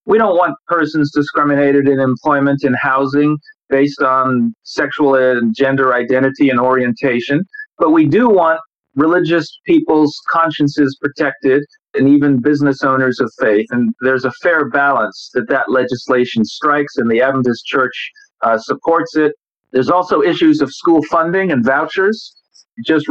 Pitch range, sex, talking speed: 135-160 Hz, male, 145 wpm